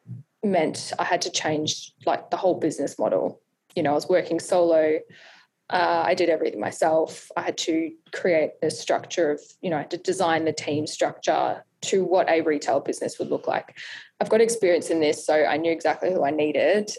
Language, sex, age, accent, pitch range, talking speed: English, female, 10-29, Australian, 160-190 Hz, 200 wpm